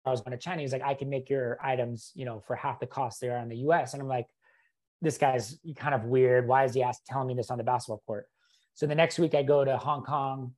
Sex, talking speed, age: male, 285 wpm, 30-49